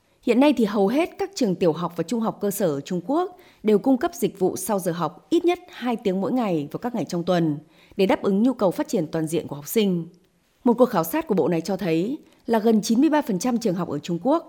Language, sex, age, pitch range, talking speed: Vietnamese, female, 20-39, 165-230 Hz, 270 wpm